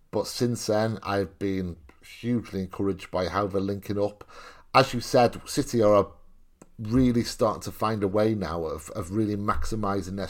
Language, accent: English, British